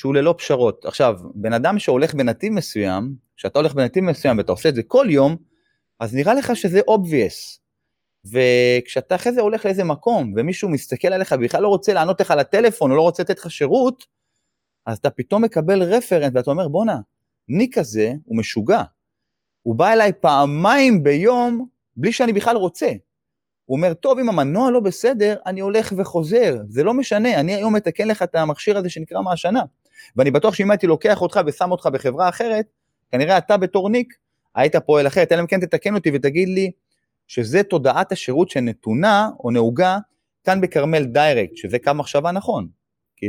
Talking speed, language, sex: 160 wpm, Hebrew, male